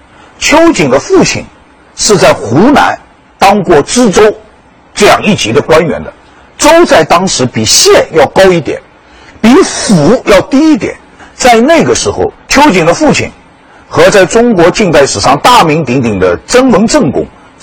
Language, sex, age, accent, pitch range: Chinese, male, 50-69, native, 180-295 Hz